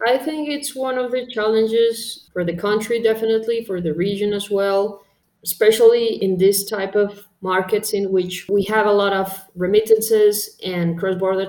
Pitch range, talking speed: 185-215 Hz, 165 wpm